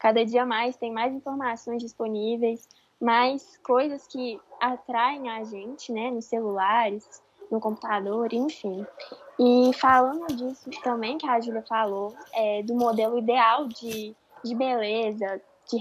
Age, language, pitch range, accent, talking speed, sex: 10-29, Portuguese, 225-280 Hz, Brazilian, 130 wpm, female